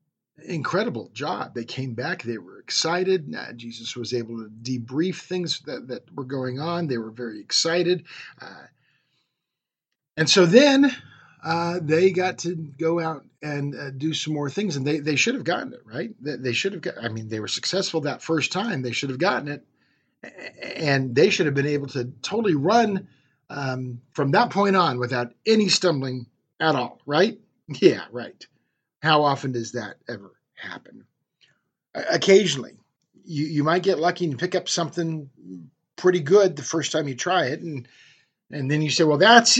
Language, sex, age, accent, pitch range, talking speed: English, male, 40-59, American, 130-180 Hz, 180 wpm